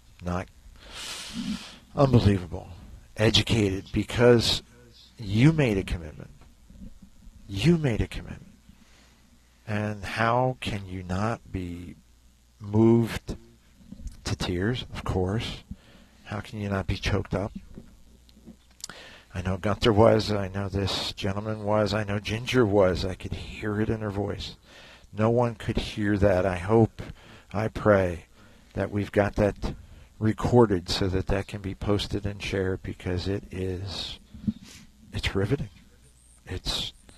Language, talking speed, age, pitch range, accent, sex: English, 125 wpm, 50-69, 95-115 Hz, American, male